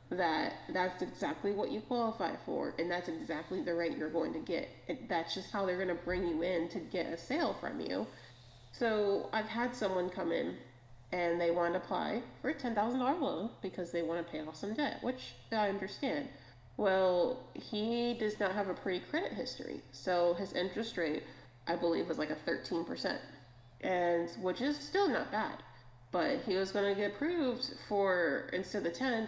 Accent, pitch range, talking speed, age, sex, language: American, 165-220 Hz, 200 wpm, 30-49, female, English